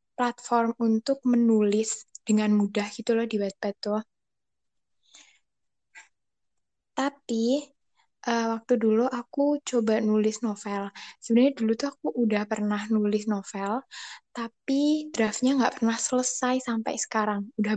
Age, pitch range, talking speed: 10-29, 215-245 Hz, 115 wpm